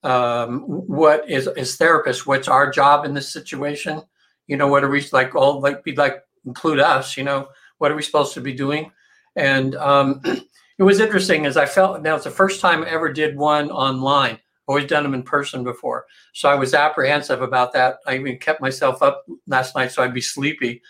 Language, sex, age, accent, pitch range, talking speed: English, male, 60-79, American, 130-155 Hz, 215 wpm